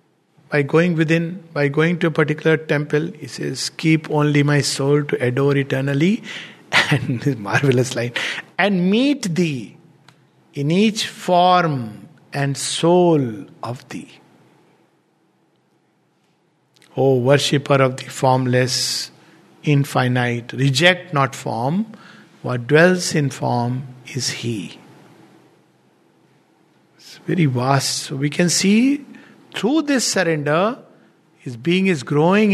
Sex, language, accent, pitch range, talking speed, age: male, English, Indian, 145-180 Hz, 115 wpm, 50-69